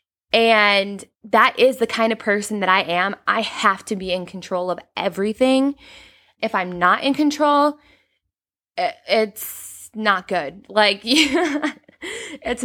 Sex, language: female, English